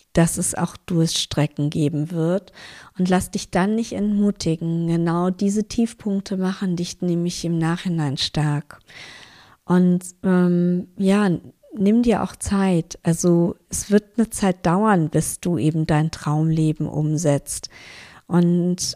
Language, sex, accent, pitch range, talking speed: German, female, German, 165-195 Hz, 135 wpm